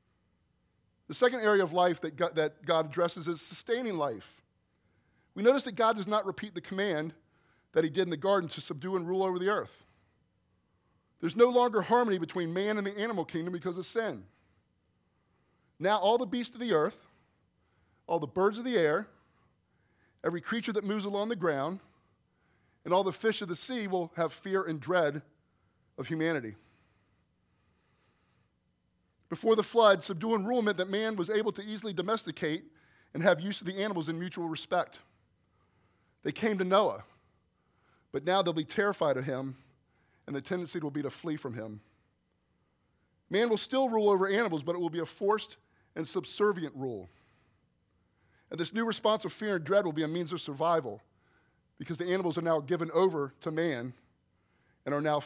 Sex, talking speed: male, 175 wpm